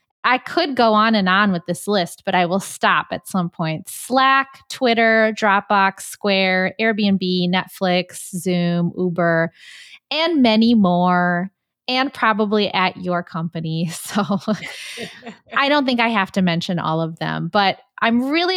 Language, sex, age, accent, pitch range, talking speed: English, female, 20-39, American, 180-235 Hz, 150 wpm